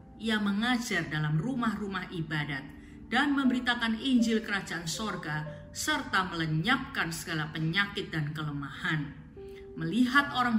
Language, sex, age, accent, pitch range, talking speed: Indonesian, female, 30-49, native, 155-225 Hz, 100 wpm